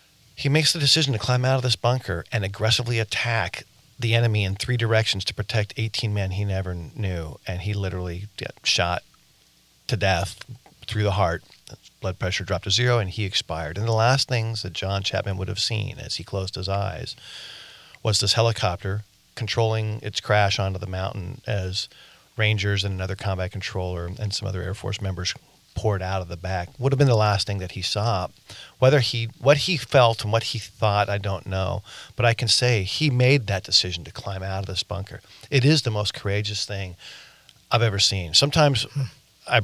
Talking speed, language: 195 wpm, English